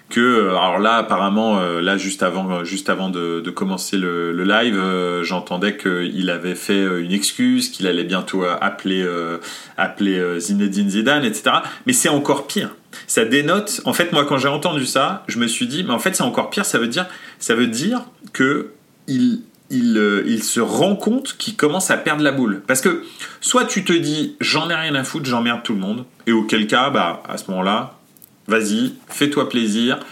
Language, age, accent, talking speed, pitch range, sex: French, 30-49, French, 195 wpm, 95-150 Hz, male